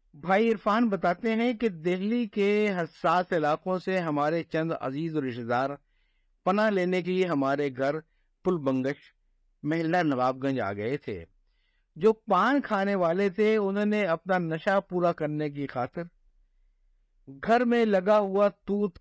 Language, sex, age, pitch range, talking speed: Urdu, male, 50-69, 140-200 Hz, 150 wpm